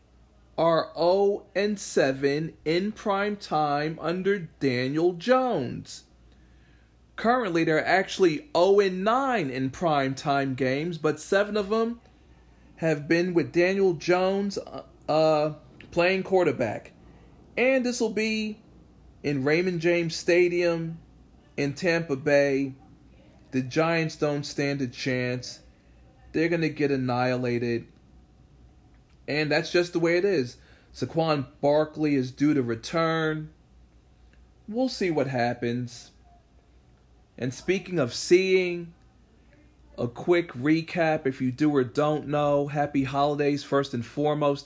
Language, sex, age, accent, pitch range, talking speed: English, male, 40-59, American, 125-170 Hz, 120 wpm